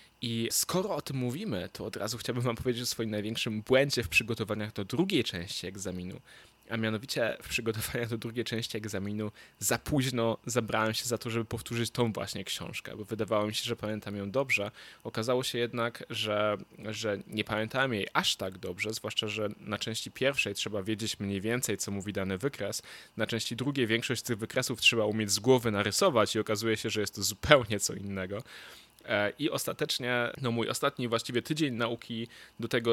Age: 10-29